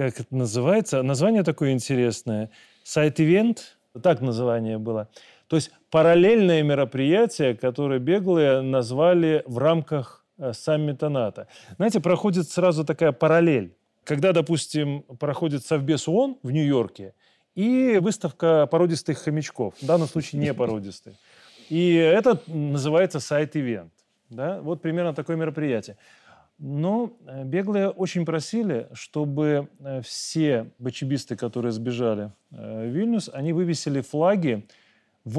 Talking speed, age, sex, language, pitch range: 110 wpm, 30-49, male, Russian, 125-170 Hz